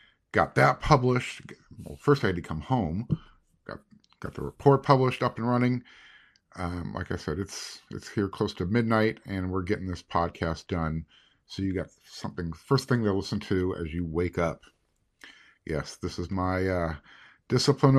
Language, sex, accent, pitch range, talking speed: English, male, American, 90-125 Hz, 175 wpm